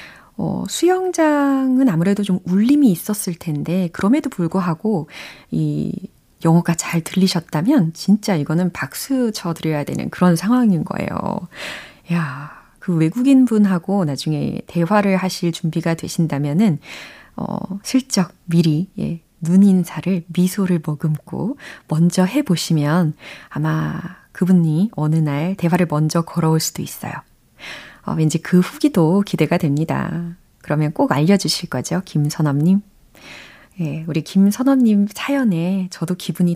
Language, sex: Korean, female